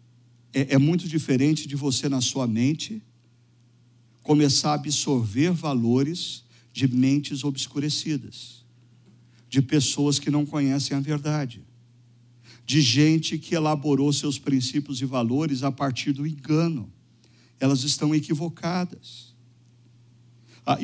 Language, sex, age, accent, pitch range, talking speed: Portuguese, male, 50-69, Brazilian, 120-165 Hz, 110 wpm